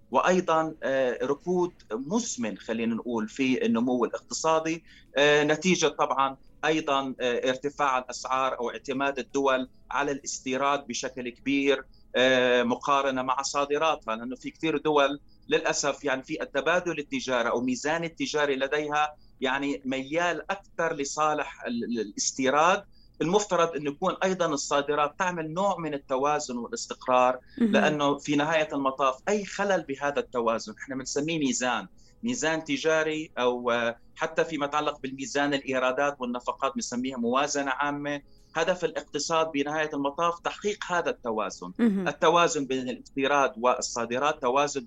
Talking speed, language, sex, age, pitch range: 115 wpm, Arabic, male, 30-49, 130-165 Hz